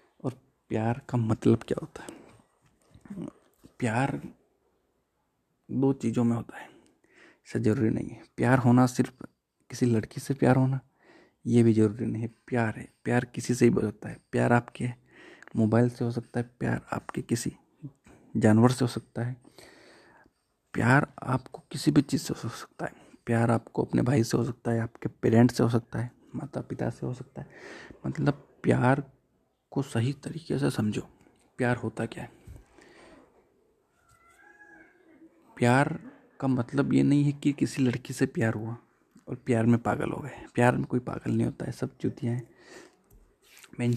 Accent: native